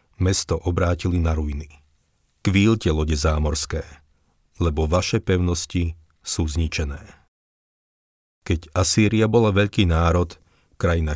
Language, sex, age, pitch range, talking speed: Slovak, male, 40-59, 80-95 Hz, 95 wpm